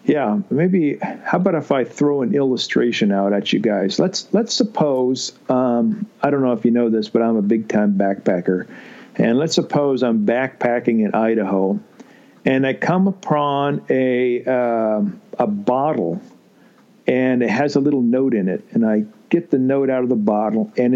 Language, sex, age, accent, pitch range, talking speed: English, male, 50-69, American, 120-175 Hz, 180 wpm